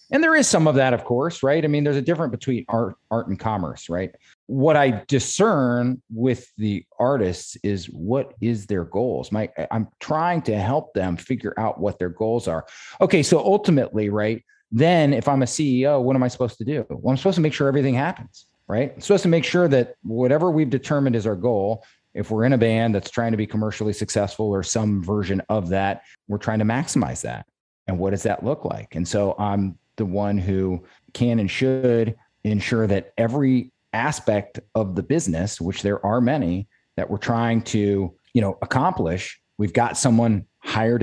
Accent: American